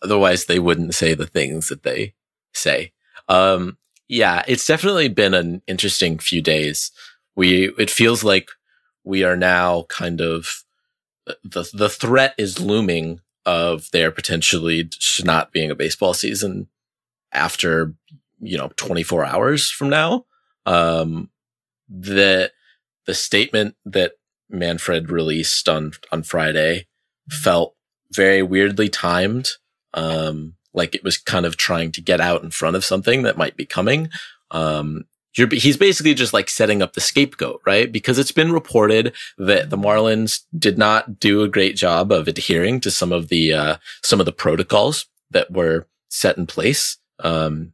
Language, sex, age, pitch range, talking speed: English, male, 30-49, 85-115 Hz, 150 wpm